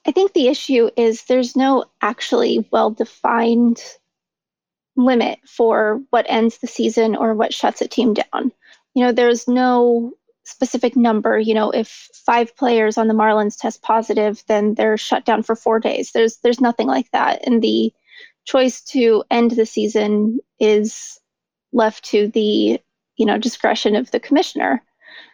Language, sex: English, female